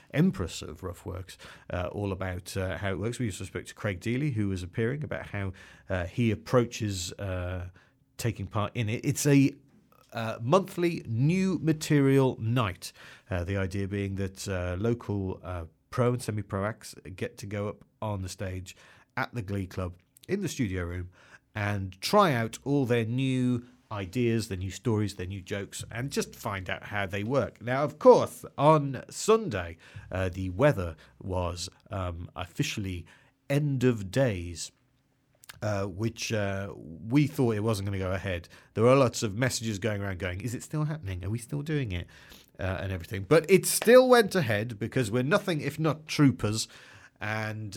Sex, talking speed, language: male, 180 wpm, English